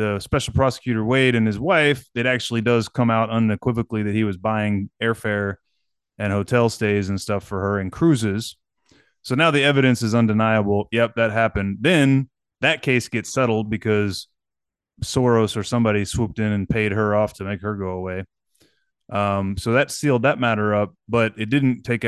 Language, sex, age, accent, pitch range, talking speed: English, male, 30-49, American, 105-130 Hz, 180 wpm